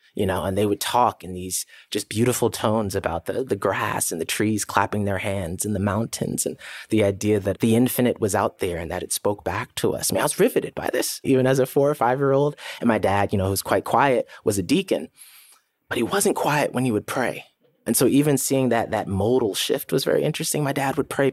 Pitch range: 95-125 Hz